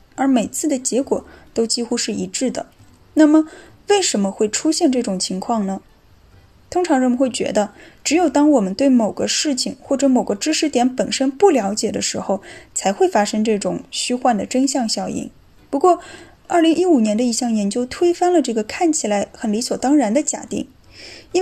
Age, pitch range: 10-29, 220-310 Hz